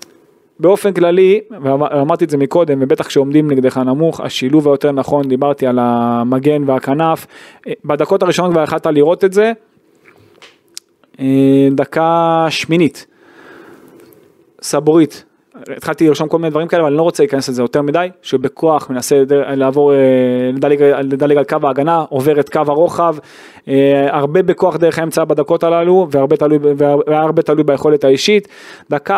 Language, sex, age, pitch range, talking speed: Hebrew, male, 20-39, 135-175 Hz, 130 wpm